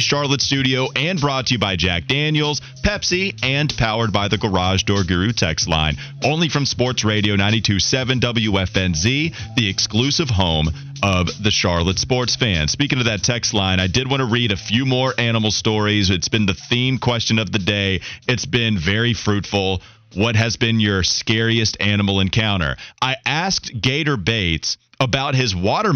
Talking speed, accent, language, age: 170 wpm, American, English, 30-49